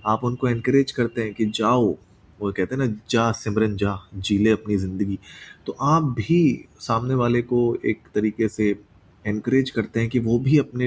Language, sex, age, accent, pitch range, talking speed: Hindi, male, 30-49, native, 100-125 Hz, 180 wpm